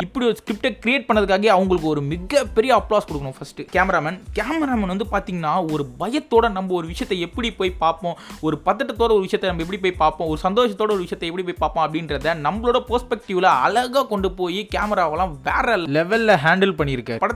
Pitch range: 170-220 Hz